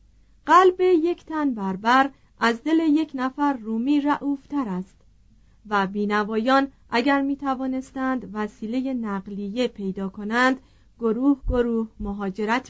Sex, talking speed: female, 110 wpm